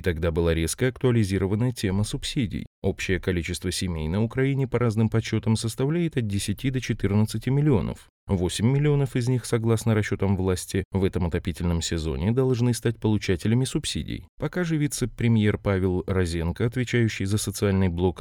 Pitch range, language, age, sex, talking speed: 90-125 Hz, Russian, 30-49, male, 150 wpm